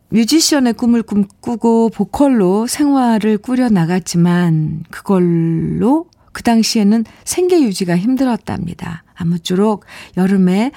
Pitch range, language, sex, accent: 165-215 Hz, Korean, female, native